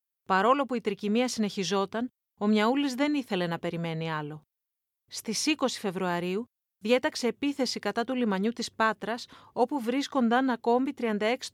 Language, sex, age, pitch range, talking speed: Greek, female, 30-49, 200-250 Hz, 135 wpm